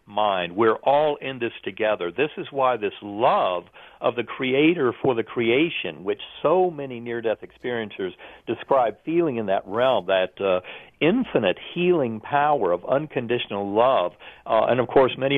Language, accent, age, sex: English, American, 50-69, male